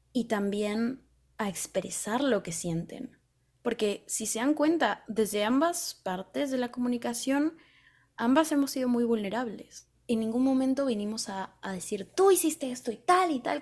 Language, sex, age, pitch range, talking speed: Spanish, female, 20-39, 190-245 Hz, 165 wpm